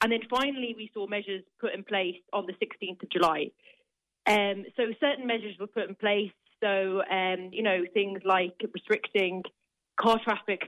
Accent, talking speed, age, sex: British, 175 wpm, 30-49, female